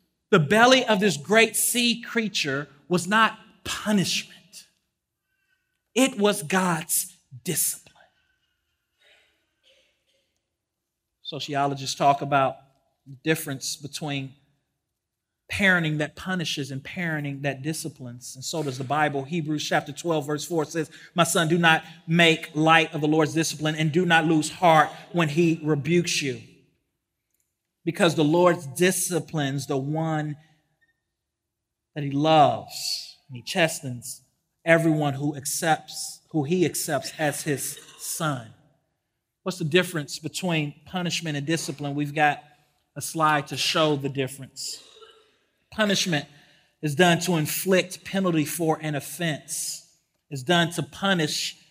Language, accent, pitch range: English, American, 145-175 Hz